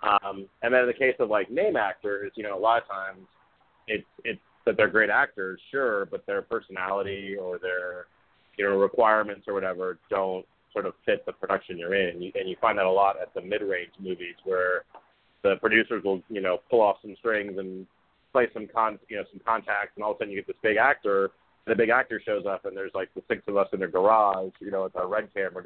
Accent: American